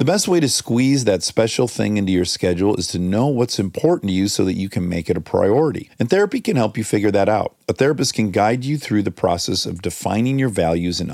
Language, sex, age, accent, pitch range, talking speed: English, male, 40-59, American, 95-140 Hz, 255 wpm